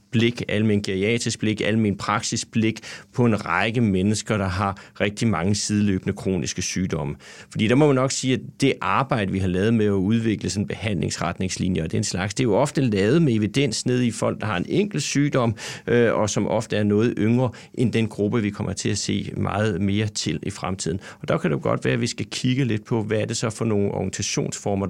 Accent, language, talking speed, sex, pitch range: native, Danish, 225 wpm, male, 100-125 Hz